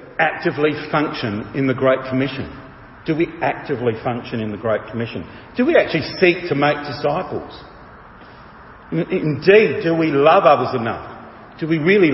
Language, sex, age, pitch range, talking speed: English, male, 50-69, 120-155 Hz, 155 wpm